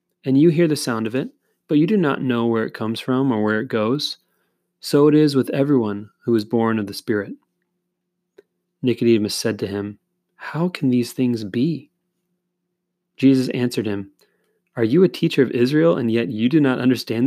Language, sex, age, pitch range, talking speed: English, male, 30-49, 115-155 Hz, 190 wpm